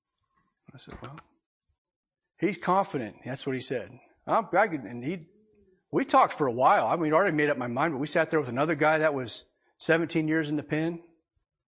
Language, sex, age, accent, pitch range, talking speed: English, male, 40-59, American, 130-175 Hz, 200 wpm